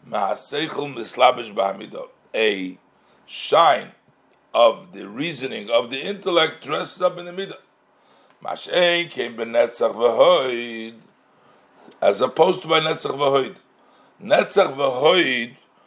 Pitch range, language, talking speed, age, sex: 145-185 Hz, English, 90 wpm, 60-79, male